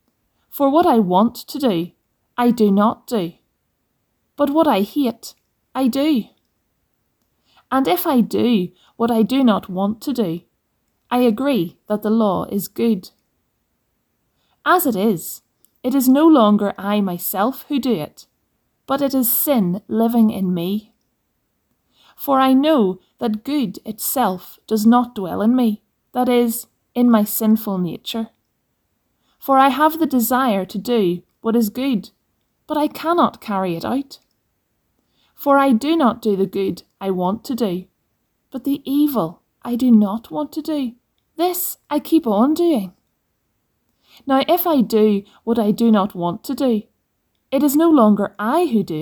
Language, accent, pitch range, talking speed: English, British, 205-275 Hz, 160 wpm